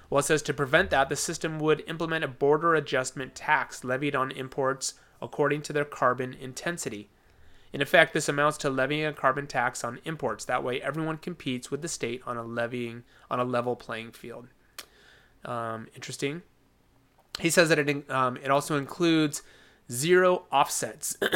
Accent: American